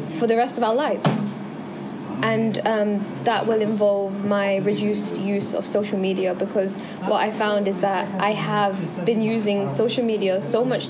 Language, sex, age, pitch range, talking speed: English, female, 10-29, 195-235 Hz, 170 wpm